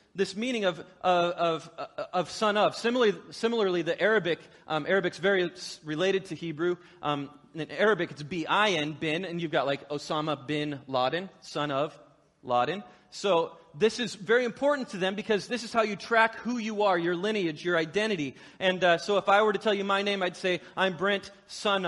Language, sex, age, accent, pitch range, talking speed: English, male, 30-49, American, 170-225 Hz, 190 wpm